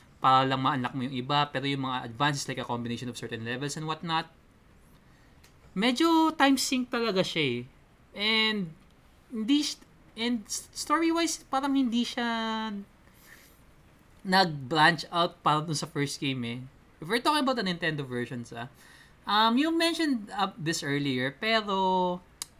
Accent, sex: native, male